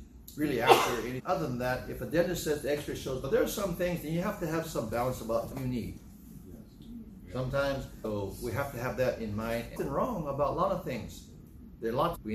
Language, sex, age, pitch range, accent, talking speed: English, male, 60-79, 115-155 Hz, American, 235 wpm